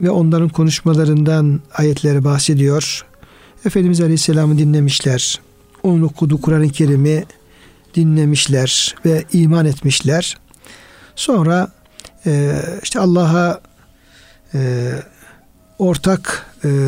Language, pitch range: Turkish, 145-180 Hz